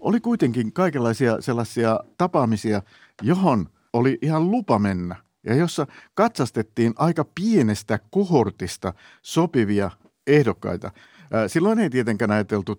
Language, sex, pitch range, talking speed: Finnish, male, 105-150 Hz, 105 wpm